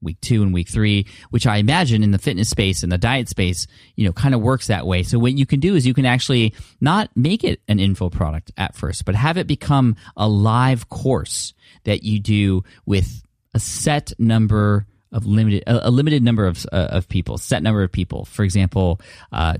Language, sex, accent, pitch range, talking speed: English, male, American, 95-120 Hz, 215 wpm